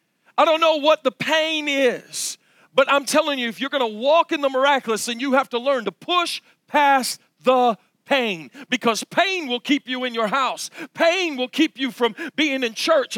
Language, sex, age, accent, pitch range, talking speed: English, male, 50-69, American, 230-290 Hz, 205 wpm